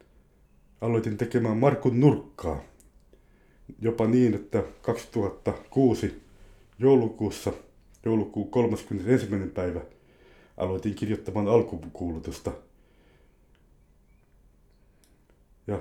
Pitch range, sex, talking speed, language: 70-115 Hz, male, 60 wpm, Finnish